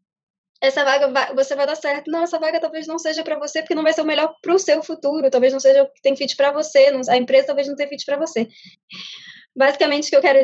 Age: 10-29